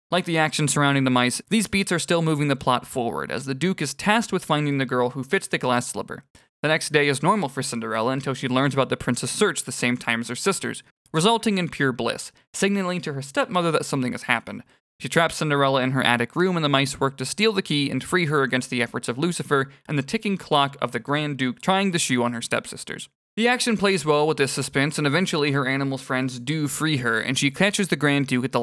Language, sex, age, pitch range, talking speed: English, male, 20-39, 125-175 Hz, 250 wpm